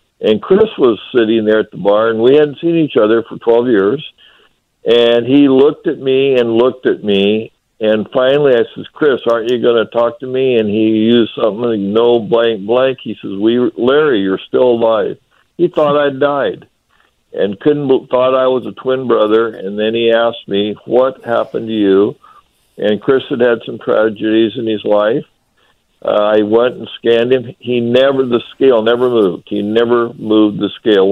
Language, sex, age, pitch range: English, male, 60-79, 105-120 Hz